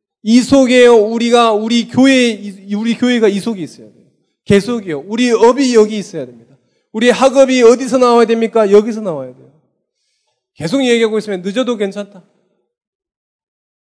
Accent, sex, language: native, male, Korean